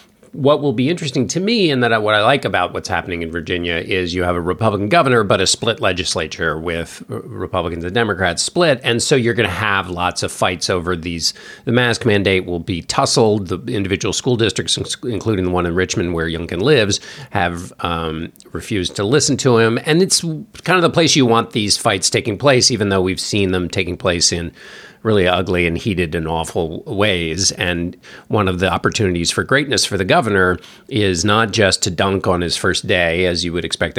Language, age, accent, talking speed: English, 40-59, American, 205 wpm